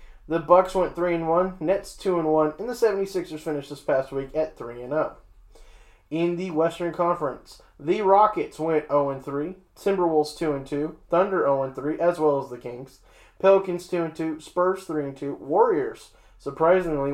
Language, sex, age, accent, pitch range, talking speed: English, male, 20-39, American, 140-185 Hz, 185 wpm